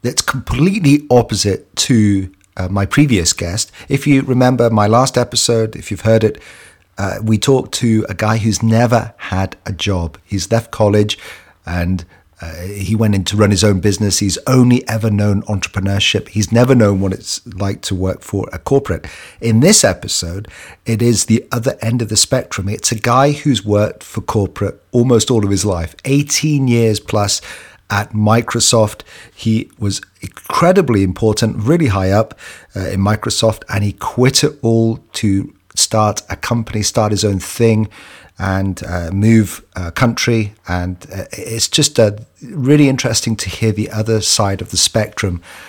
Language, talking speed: English, 170 wpm